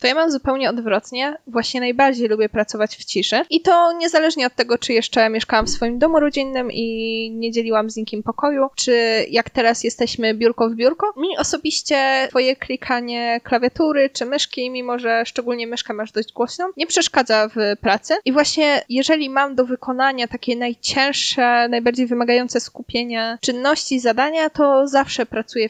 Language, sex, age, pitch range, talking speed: Polish, female, 20-39, 230-280 Hz, 165 wpm